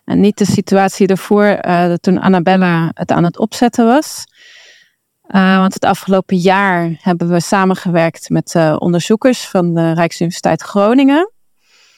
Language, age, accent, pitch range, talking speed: Dutch, 30-49, Dutch, 175-205 Hz, 140 wpm